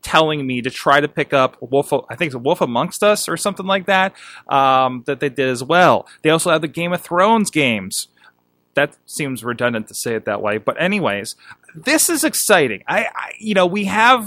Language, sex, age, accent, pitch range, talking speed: English, male, 30-49, American, 130-195 Hz, 215 wpm